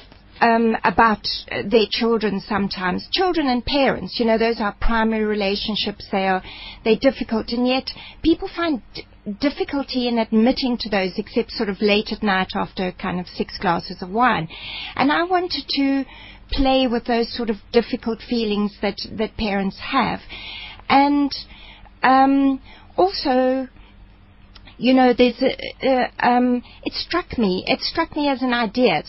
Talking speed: 155 wpm